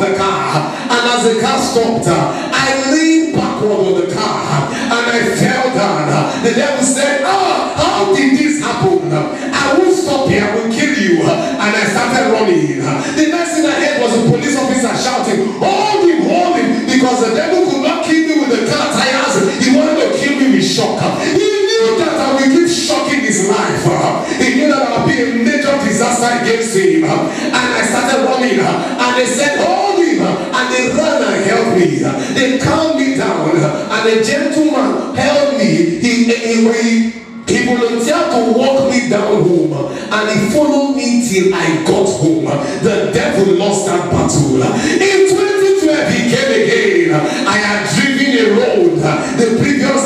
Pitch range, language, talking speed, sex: 225-305 Hz, English, 175 wpm, male